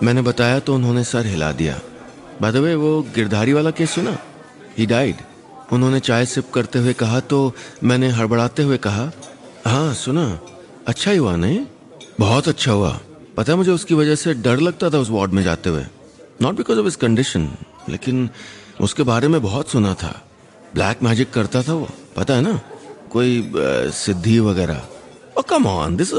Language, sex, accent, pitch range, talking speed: Hindi, male, native, 100-130 Hz, 165 wpm